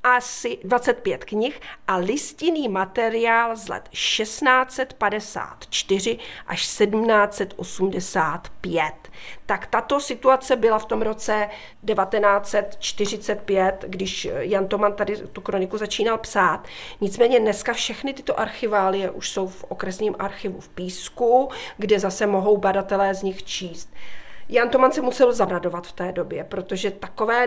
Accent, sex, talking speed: native, female, 120 wpm